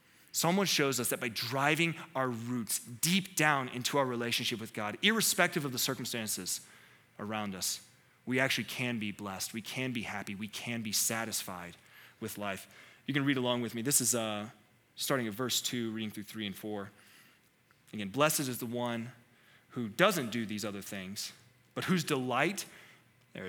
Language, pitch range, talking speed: English, 110-140 Hz, 175 wpm